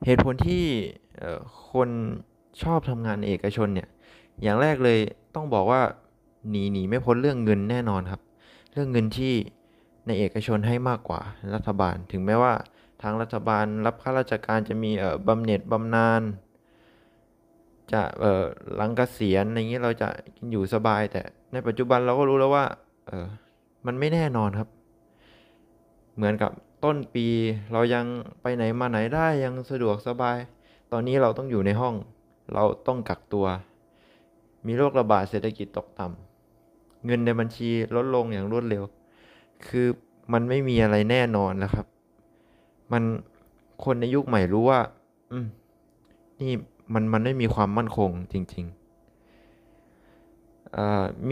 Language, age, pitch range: Thai, 20-39, 105-120 Hz